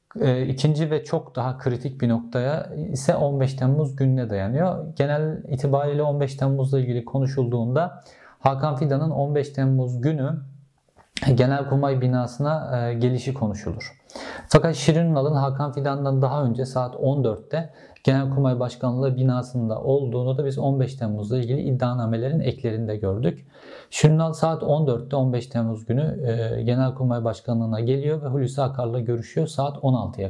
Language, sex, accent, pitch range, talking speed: Turkish, male, native, 125-150 Hz, 130 wpm